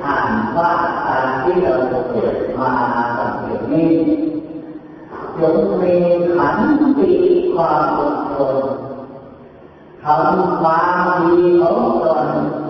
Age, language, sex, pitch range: 40-59, Thai, female, 140-225 Hz